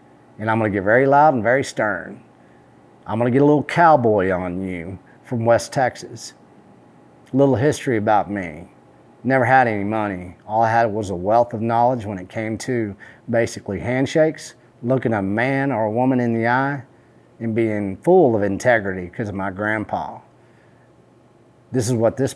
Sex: male